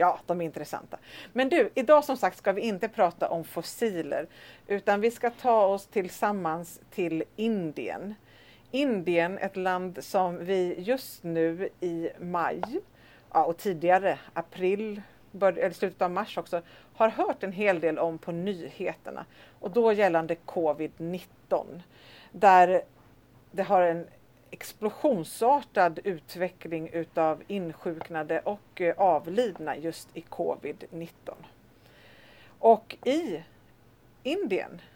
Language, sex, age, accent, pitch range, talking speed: Swedish, female, 40-59, native, 165-210 Hz, 115 wpm